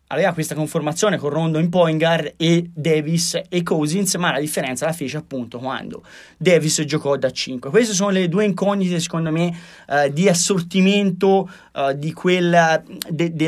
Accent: native